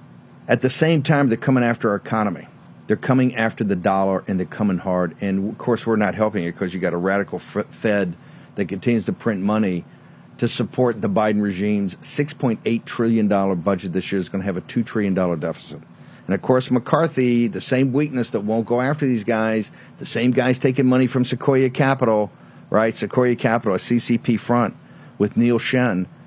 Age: 50-69